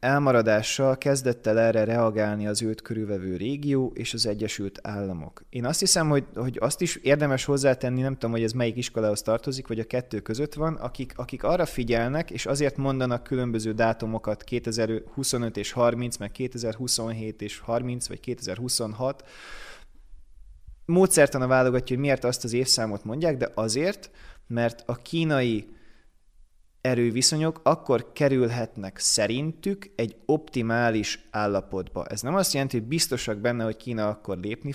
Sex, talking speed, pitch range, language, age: male, 145 wpm, 110-140 Hz, Hungarian, 20-39